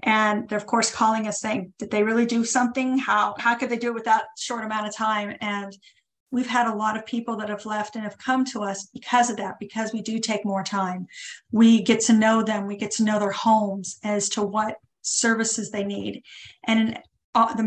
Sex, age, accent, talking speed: female, 40-59, American, 235 wpm